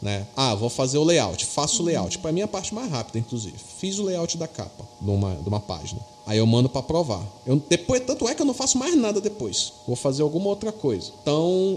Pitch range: 125-205 Hz